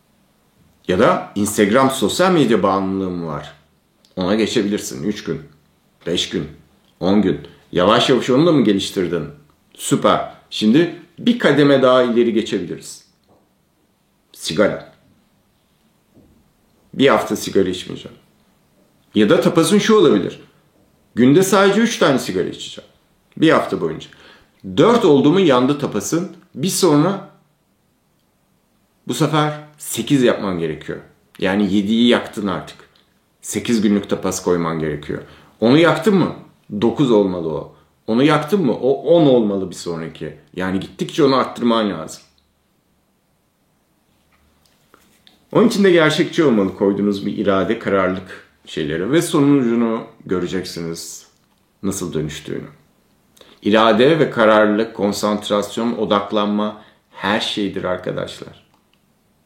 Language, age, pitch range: Turkish, 50-69, 95-150 Hz